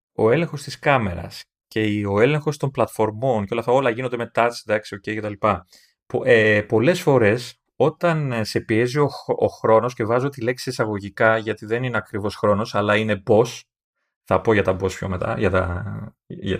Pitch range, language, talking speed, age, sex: 105-145 Hz, Greek, 190 wpm, 30-49, male